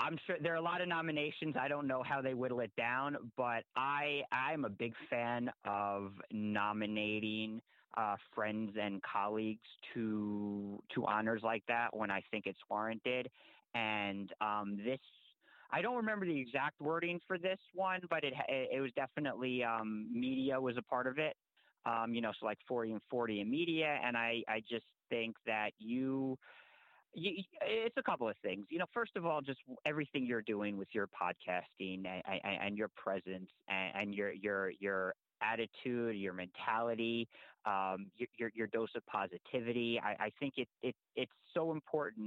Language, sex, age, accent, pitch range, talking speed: English, male, 30-49, American, 105-135 Hz, 175 wpm